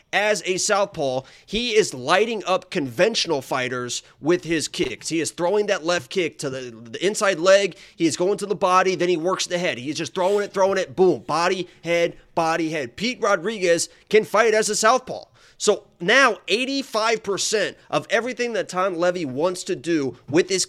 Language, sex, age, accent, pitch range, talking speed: English, male, 30-49, American, 150-190 Hz, 190 wpm